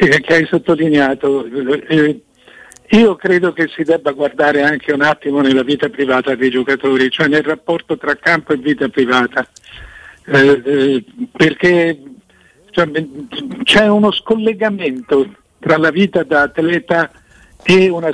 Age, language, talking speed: 60-79, Italian, 130 wpm